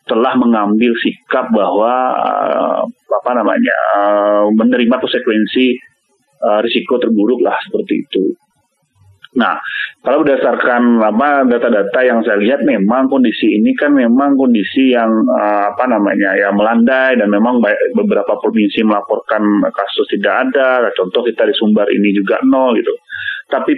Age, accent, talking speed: 30-49, native, 120 wpm